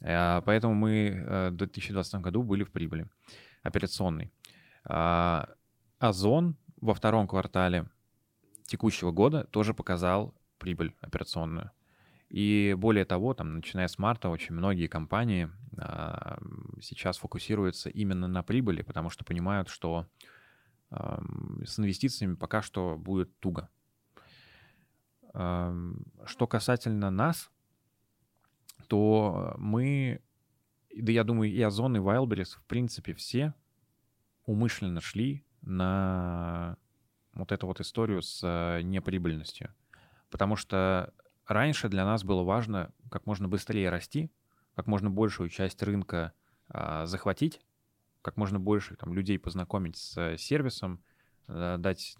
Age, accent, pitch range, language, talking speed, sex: 20-39, native, 90-115 Hz, Russian, 105 wpm, male